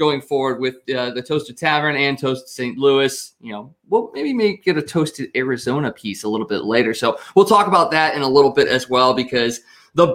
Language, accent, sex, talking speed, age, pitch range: English, American, male, 225 wpm, 20-39, 130-185 Hz